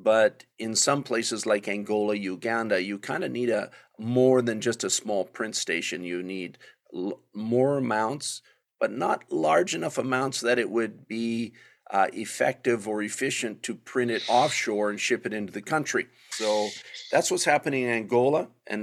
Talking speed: 170 wpm